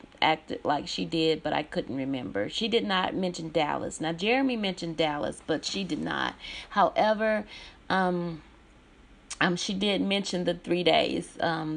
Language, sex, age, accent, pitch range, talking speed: English, female, 30-49, American, 170-215 Hz, 160 wpm